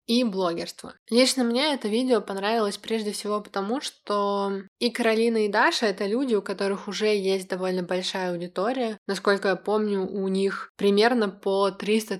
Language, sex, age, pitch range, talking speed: Russian, female, 20-39, 185-215 Hz, 155 wpm